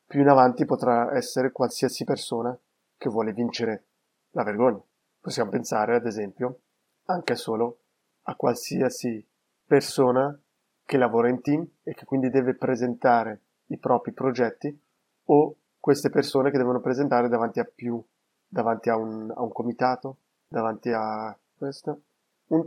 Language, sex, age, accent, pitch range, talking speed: Italian, male, 30-49, native, 115-140 Hz, 135 wpm